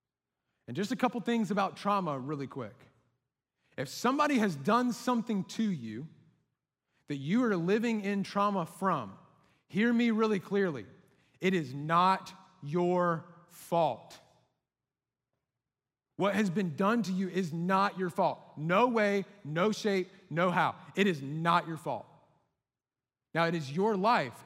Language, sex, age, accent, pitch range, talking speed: English, male, 30-49, American, 135-195 Hz, 140 wpm